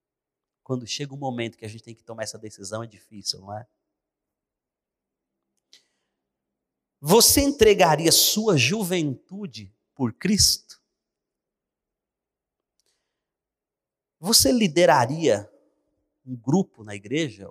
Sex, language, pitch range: male, Portuguese, 115-180 Hz